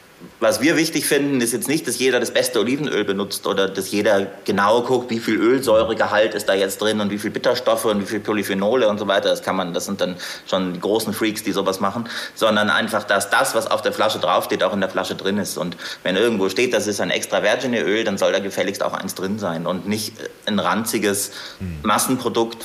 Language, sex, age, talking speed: German, male, 30-49, 230 wpm